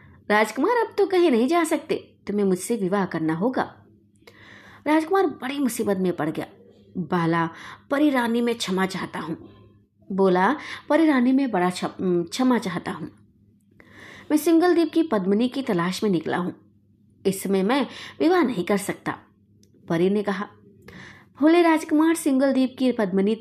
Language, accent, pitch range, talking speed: Hindi, native, 175-280 Hz, 145 wpm